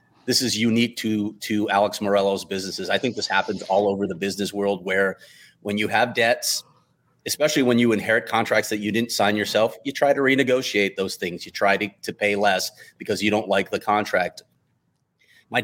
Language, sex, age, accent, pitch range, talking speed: English, male, 30-49, American, 105-120 Hz, 195 wpm